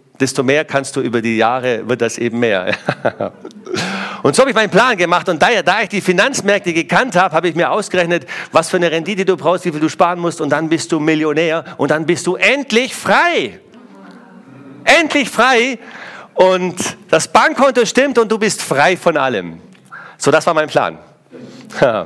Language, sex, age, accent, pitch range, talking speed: German, male, 50-69, German, 145-200 Hz, 190 wpm